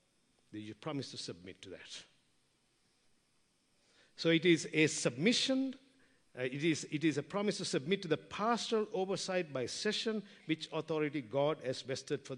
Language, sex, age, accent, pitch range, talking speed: English, male, 50-69, Indian, 140-195 Hz, 160 wpm